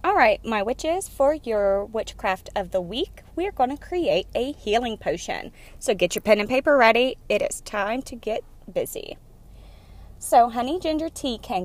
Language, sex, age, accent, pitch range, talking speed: English, female, 30-49, American, 175-255 Hz, 180 wpm